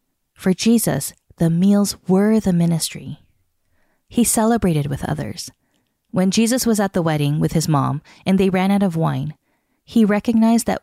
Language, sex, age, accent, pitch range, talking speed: English, female, 20-39, American, 155-195 Hz, 160 wpm